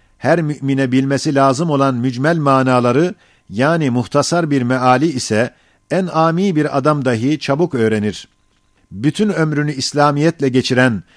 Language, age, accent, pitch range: Turkish, 50-69, native, 120-150 Hz